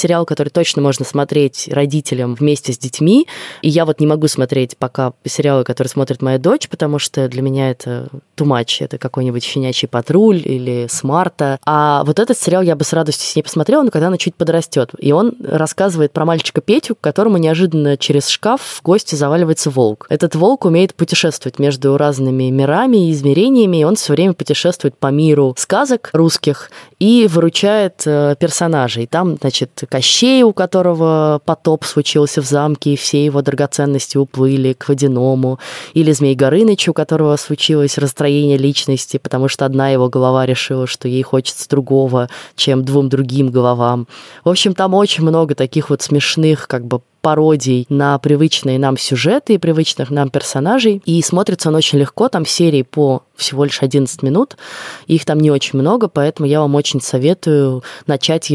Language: Russian